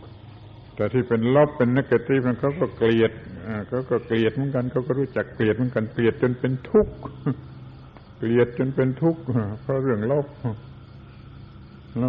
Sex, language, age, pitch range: male, Thai, 70-89, 95-120 Hz